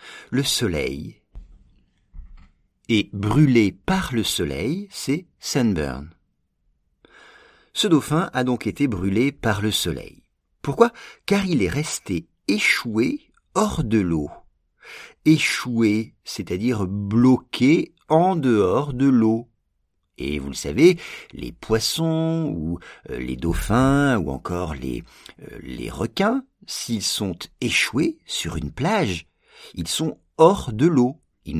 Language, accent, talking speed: English, French, 115 wpm